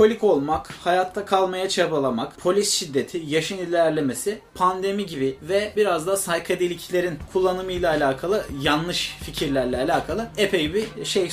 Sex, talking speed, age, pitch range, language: male, 125 wpm, 30-49, 150-200 Hz, Turkish